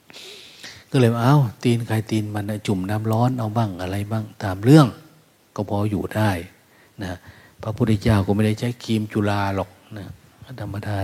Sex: male